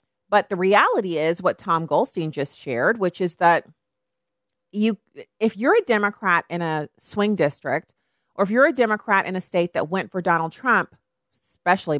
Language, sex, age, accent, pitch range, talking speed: English, female, 40-59, American, 155-200 Hz, 175 wpm